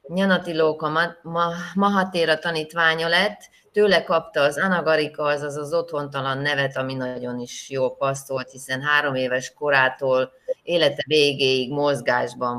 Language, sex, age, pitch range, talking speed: Hungarian, female, 30-49, 135-170 Hz, 125 wpm